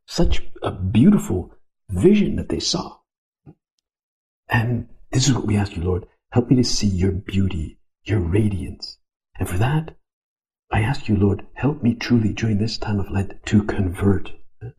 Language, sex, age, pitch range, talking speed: English, male, 50-69, 95-130 Hz, 160 wpm